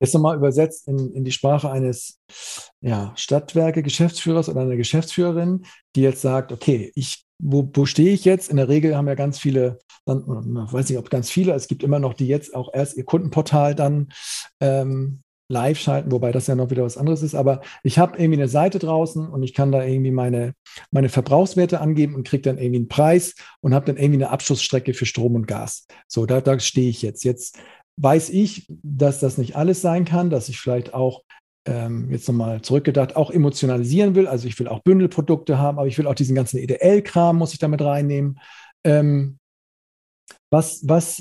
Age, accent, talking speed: 50-69, German, 200 wpm